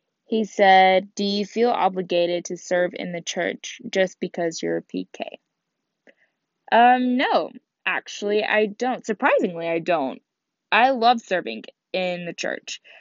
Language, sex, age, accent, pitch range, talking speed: English, female, 10-29, American, 175-210 Hz, 140 wpm